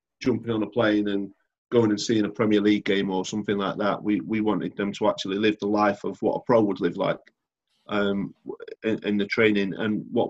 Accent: British